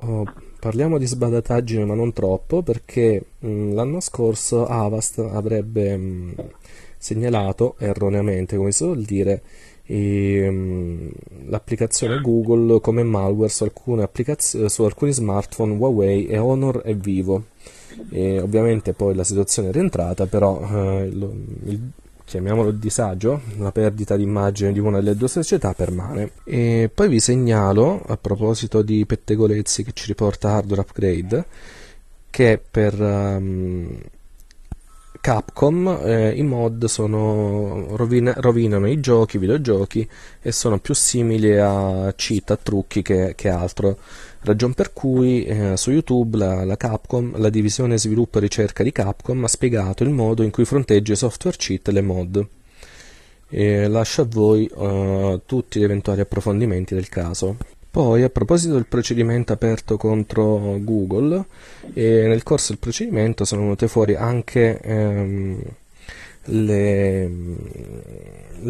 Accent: native